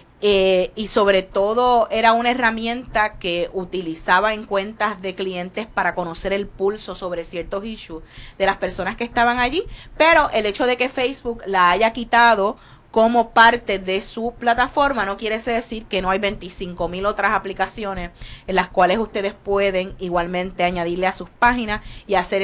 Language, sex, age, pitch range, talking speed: Spanish, female, 30-49, 190-235 Hz, 165 wpm